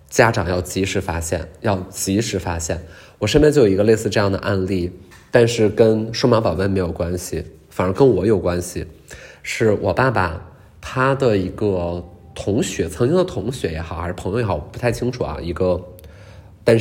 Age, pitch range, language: 20-39, 90-115 Hz, Chinese